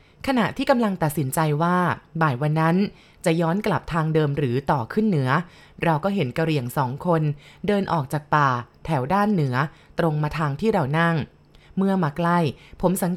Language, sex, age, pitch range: Thai, female, 20-39, 150-185 Hz